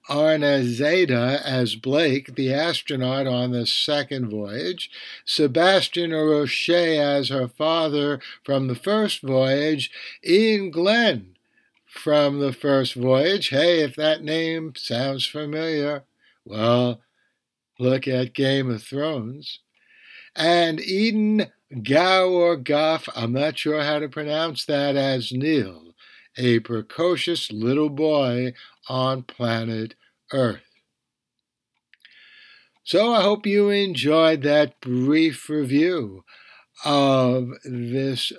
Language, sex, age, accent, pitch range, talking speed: English, male, 60-79, American, 125-165 Hz, 105 wpm